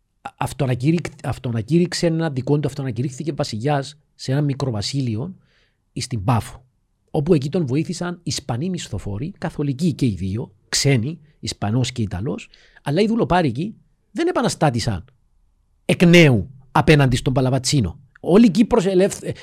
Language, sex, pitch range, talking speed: Greek, male, 120-175 Hz, 125 wpm